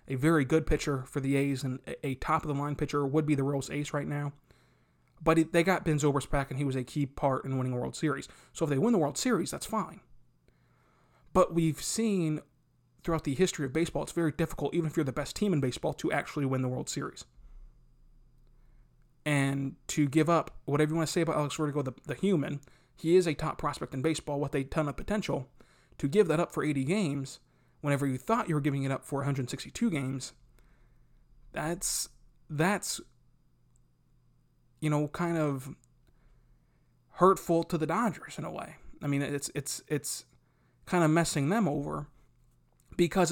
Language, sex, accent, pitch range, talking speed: English, male, American, 135-165 Hz, 190 wpm